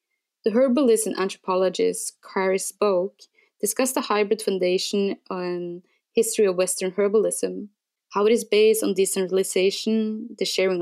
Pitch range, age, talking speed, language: 185-225 Hz, 20-39, 130 wpm, English